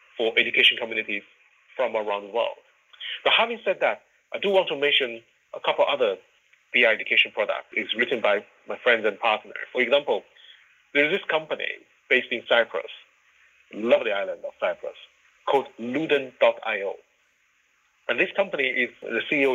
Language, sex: English, male